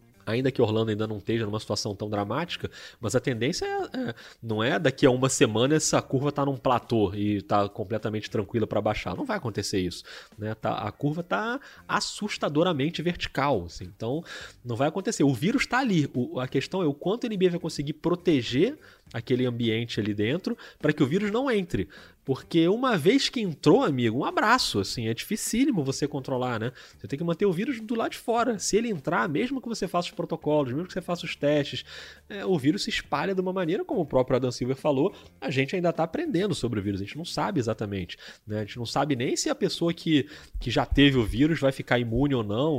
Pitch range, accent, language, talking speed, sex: 115-185 Hz, Brazilian, Portuguese, 220 wpm, male